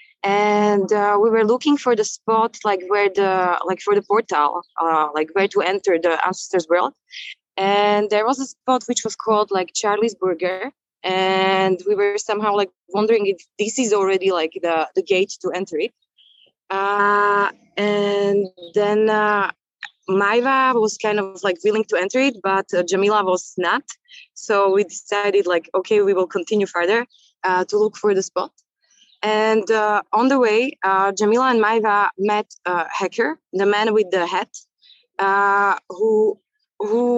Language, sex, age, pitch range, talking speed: Finnish, female, 20-39, 190-235 Hz, 170 wpm